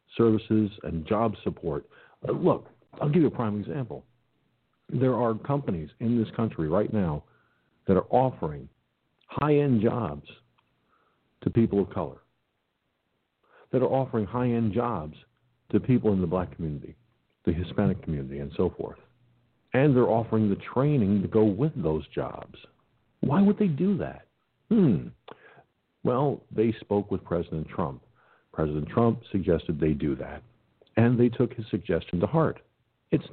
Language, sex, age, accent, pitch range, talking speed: English, male, 50-69, American, 85-120 Hz, 145 wpm